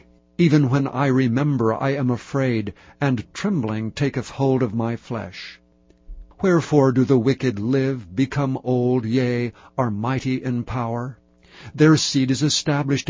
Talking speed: 135 wpm